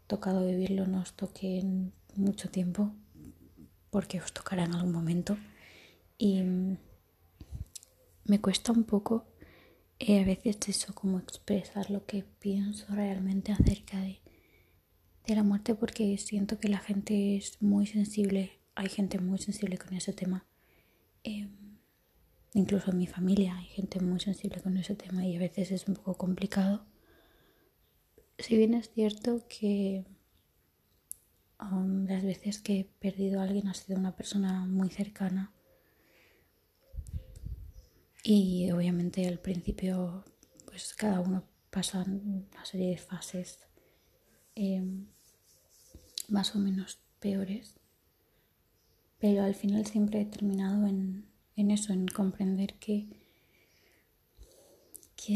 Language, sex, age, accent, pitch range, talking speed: Spanish, female, 20-39, Spanish, 185-205 Hz, 125 wpm